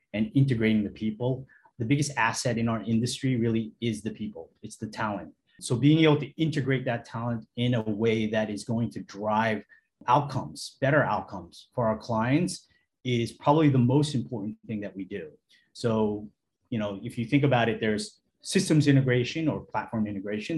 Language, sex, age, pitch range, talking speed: English, male, 30-49, 110-135 Hz, 180 wpm